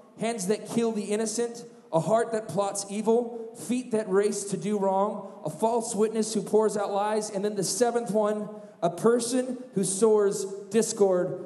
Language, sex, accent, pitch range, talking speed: English, male, American, 200-245 Hz, 175 wpm